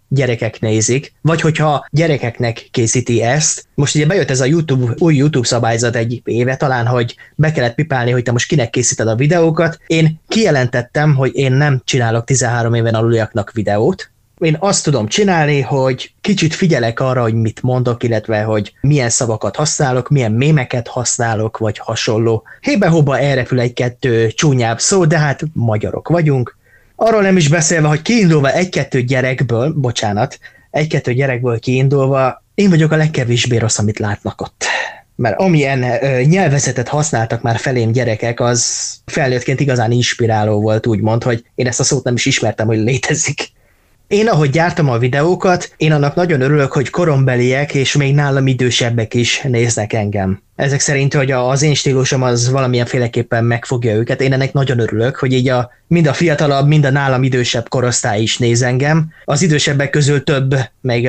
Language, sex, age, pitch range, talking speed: Hungarian, male, 20-39, 120-150 Hz, 160 wpm